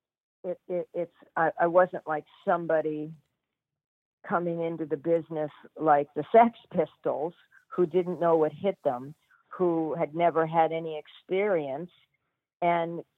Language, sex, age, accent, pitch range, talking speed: English, female, 50-69, American, 150-180 Hz, 130 wpm